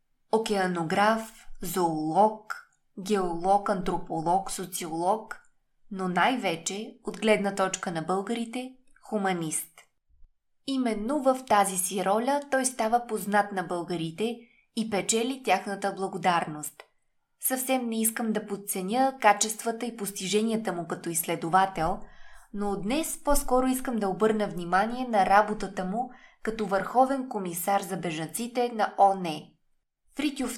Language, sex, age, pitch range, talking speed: Bulgarian, female, 20-39, 190-240 Hz, 110 wpm